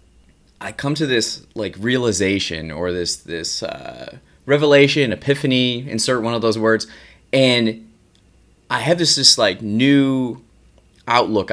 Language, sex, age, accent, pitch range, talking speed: English, male, 20-39, American, 100-140 Hz, 130 wpm